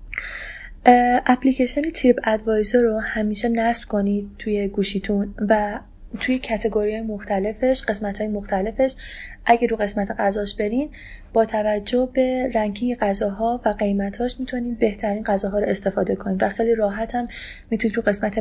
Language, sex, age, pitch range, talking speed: Persian, female, 20-39, 205-245 Hz, 125 wpm